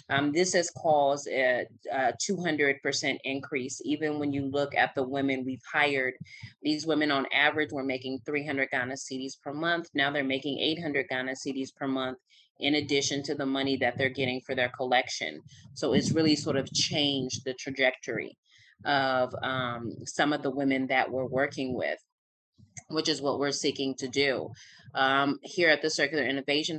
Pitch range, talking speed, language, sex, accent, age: 135-150 Hz, 175 wpm, English, female, American, 30-49